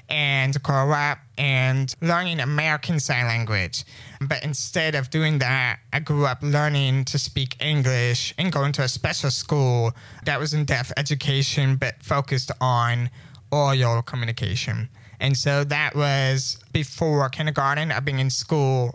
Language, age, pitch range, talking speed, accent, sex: English, 20-39, 130-150 Hz, 145 wpm, American, male